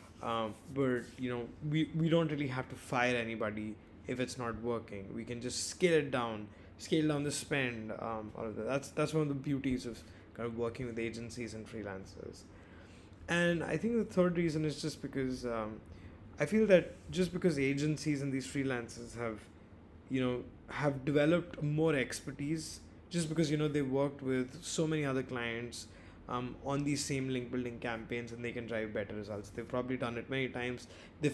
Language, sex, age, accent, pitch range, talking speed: English, male, 20-39, Indian, 105-145 Hz, 195 wpm